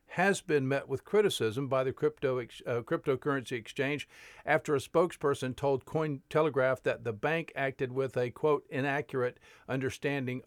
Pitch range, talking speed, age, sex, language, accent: 120-150 Hz, 145 wpm, 50-69, male, English, American